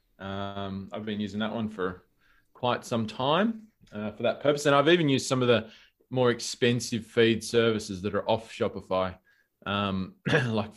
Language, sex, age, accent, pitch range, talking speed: English, male, 20-39, Australian, 105-135 Hz, 175 wpm